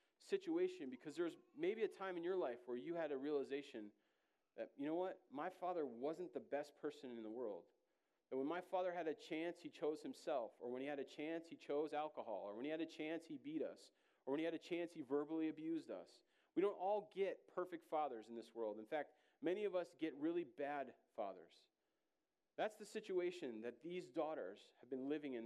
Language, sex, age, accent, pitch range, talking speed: English, male, 40-59, American, 150-225 Hz, 220 wpm